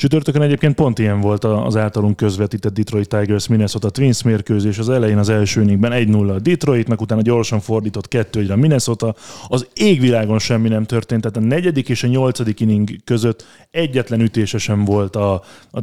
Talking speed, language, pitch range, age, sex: 180 wpm, Hungarian, 110-125 Hz, 20-39, male